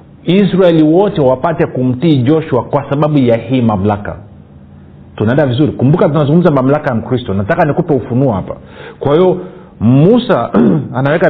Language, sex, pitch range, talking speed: Swahili, male, 115-160 Hz, 135 wpm